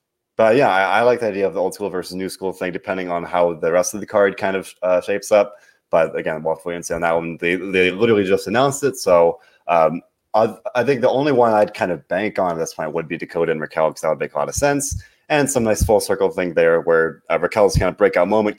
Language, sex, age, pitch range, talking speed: English, male, 20-39, 85-105 Hz, 275 wpm